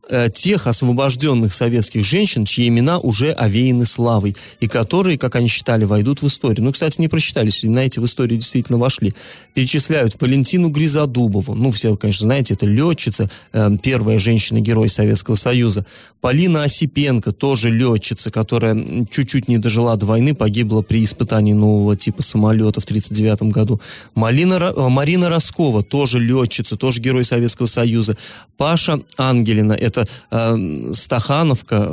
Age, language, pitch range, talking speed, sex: 30-49, Russian, 110-140 Hz, 140 wpm, male